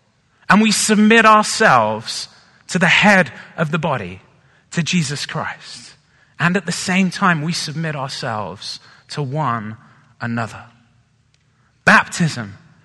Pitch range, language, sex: 125-175 Hz, English, male